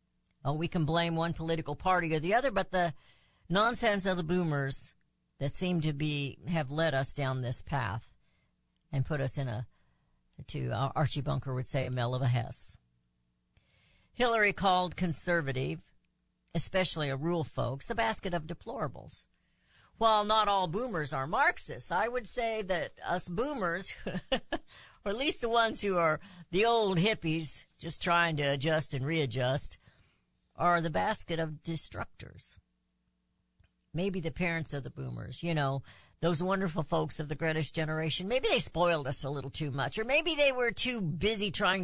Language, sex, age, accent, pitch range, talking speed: English, female, 50-69, American, 135-180 Hz, 165 wpm